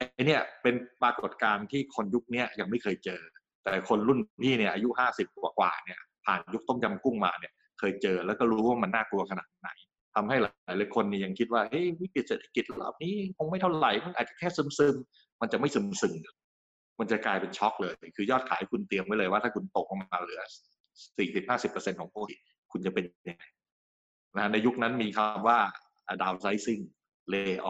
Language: English